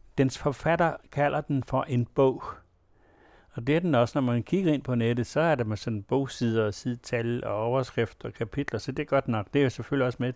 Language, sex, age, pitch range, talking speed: Danish, male, 60-79, 110-135 Hz, 240 wpm